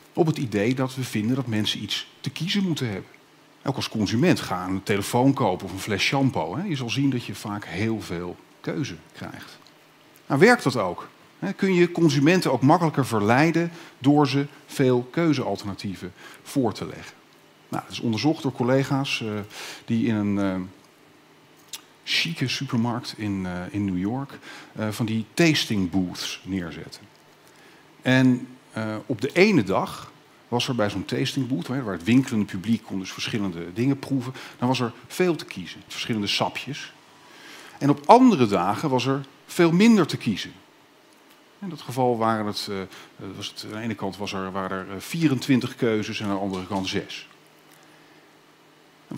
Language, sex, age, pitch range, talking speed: Dutch, male, 50-69, 100-140 Hz, 165 wpm